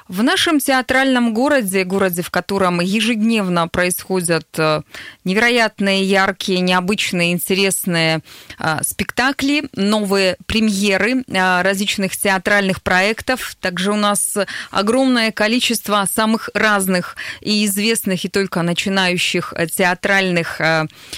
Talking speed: 90 wpm